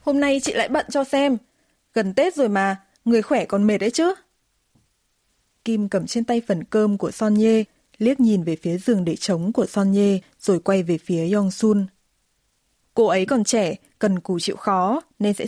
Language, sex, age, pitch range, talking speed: Vietnamese, female, 20-39, 185-230 Hz, 200 wpm